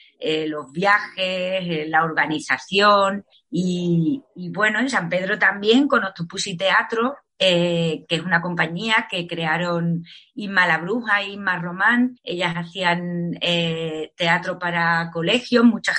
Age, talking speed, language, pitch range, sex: 30-49, 135 wpm, Spanish, 170-210 Hz, female